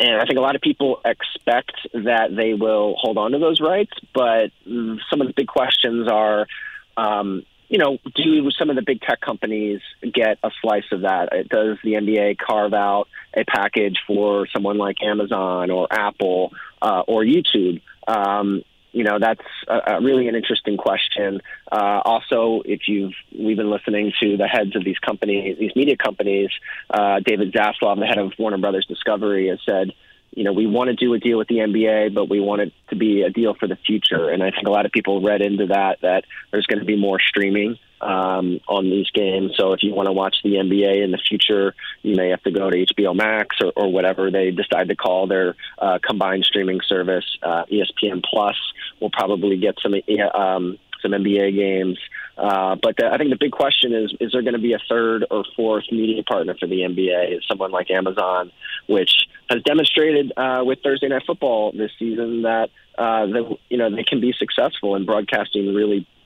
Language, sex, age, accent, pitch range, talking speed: English, male, 30-49, American, 95-115 Hz, 205 wpm